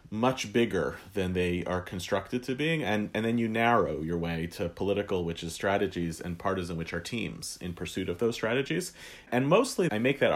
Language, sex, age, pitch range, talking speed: English, male, 30-49, 90-115 Hz, 205 wpm